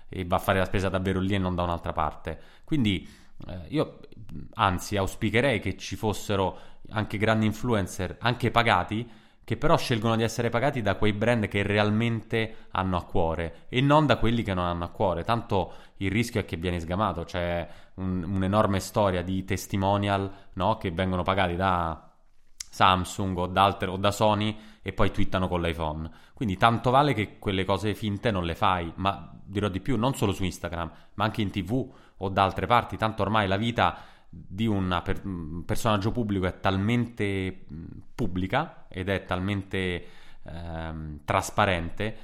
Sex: male